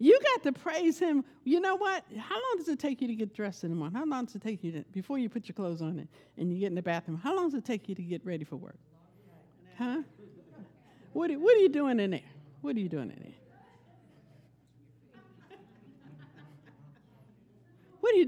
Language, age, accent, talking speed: English, 60-79, American, 225 wpm